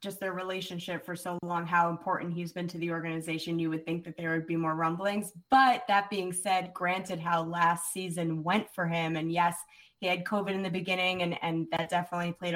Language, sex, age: English, female, 20-39